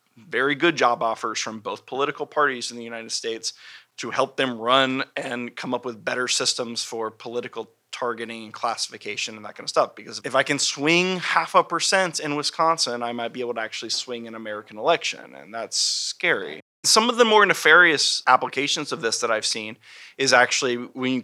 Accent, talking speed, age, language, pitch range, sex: American, 200 wpm, 20-39, English, 120-155 Hz, male